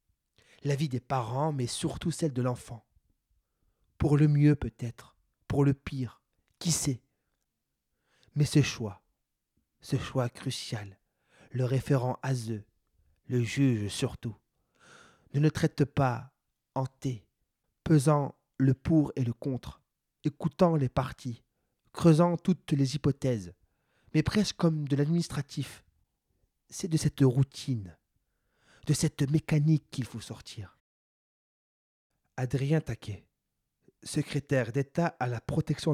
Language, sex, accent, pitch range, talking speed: French, male, French, 115-150 Hz, 120 wpm